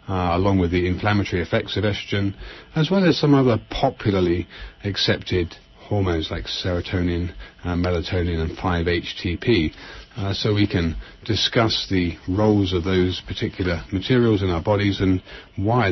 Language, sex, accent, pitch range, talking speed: English, male, British, 90-110 Hz, 135 wpm